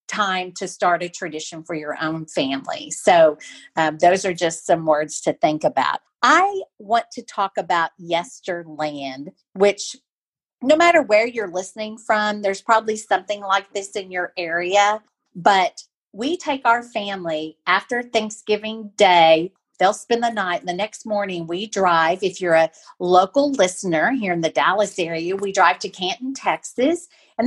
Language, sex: English, female